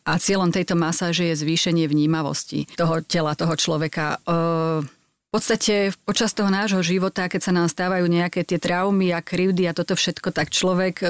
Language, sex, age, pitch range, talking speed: Slovak, female, 30-49, 175-200 Hz, 170 wpm